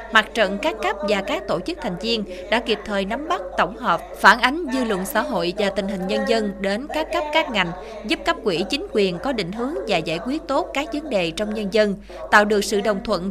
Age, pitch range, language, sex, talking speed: 20-39, 185-245 Hz, Vietnamese, female, 255 wpm